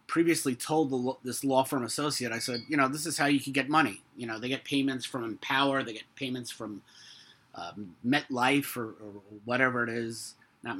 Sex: male